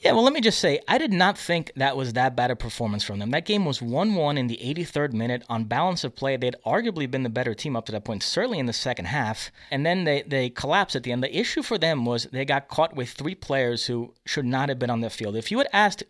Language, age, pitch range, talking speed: English, 30-49, 125-150 Hz, 285 wpm